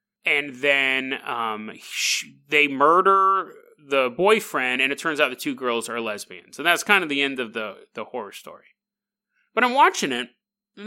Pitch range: 130-210 Hz